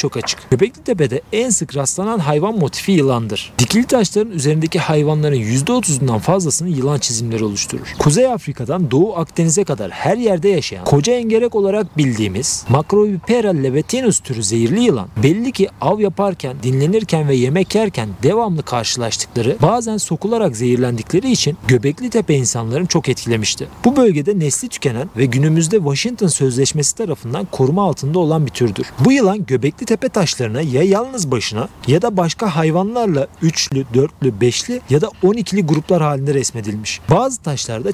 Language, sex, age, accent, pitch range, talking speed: Turkish, male, 40-59, native, 130-195 Hz, 140 wpm